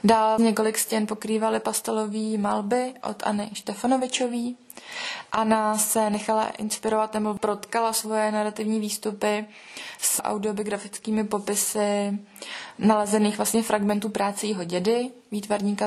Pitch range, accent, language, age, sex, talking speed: 210-230 Hz, native, Czech, 20-39, female, 105 wpm